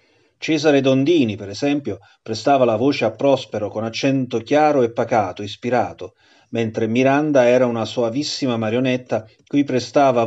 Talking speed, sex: 135 wpm, male